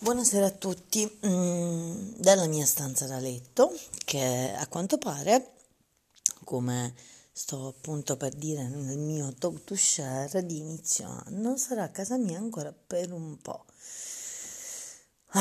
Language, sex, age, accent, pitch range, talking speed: Italian, female, 30-49, native, 130-175 Hz, 130 wpm